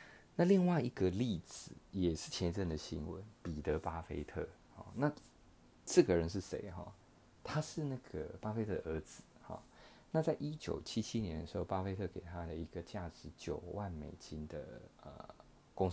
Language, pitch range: Chinese, 80-100 Hz